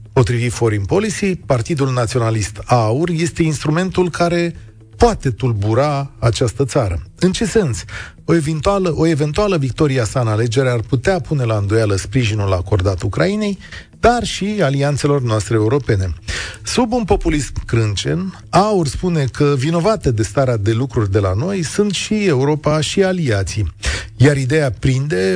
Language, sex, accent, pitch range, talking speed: Romanian, male, native, 110-160 Hz, 140 wpm